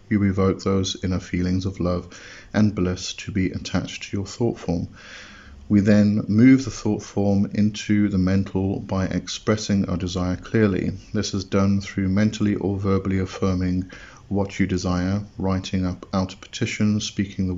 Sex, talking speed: male, 160 wpm